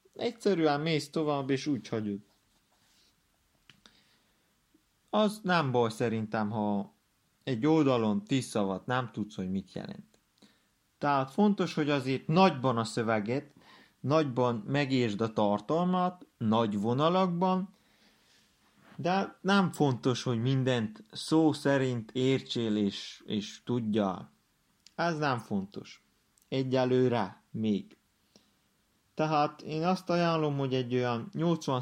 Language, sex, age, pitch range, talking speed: Hungarian, male, 30-49, 110-155 Hz, 105 wpm